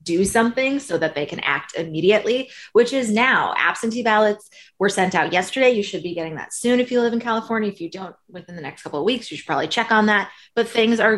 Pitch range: 160-220 Hz